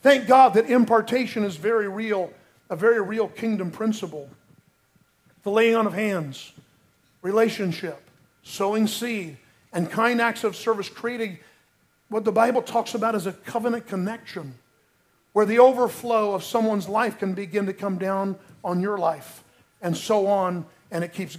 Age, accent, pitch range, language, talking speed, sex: 50-69, American, 190-250 Hz, English, 155 wpm, male